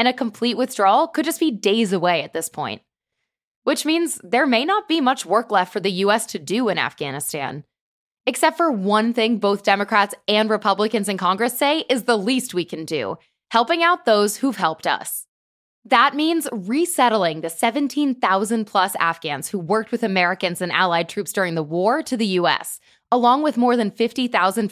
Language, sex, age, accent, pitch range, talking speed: English, female, 20-39, American, 180-260 Hz, 185 wpm